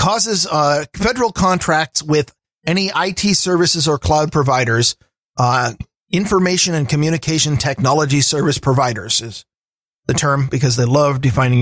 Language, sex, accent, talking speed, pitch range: English, male, American, 130 wpm, 130-165 Hz